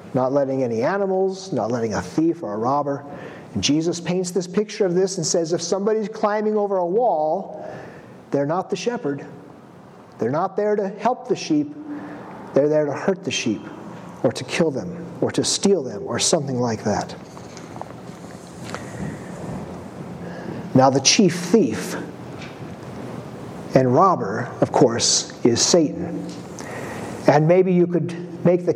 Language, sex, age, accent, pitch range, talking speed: English, male, 50-69, American, 150-205 Hz, 150 wpm